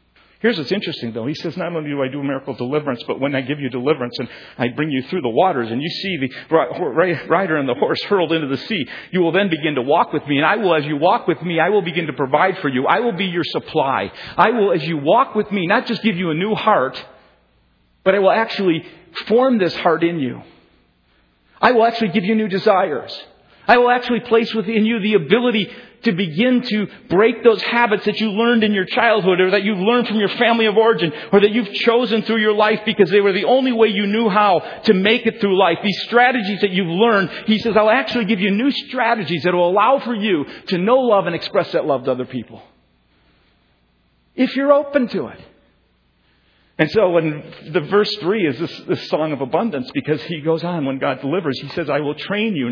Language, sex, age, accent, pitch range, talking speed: English, male, 40-59, American, 145-220 Hz, 235 wpm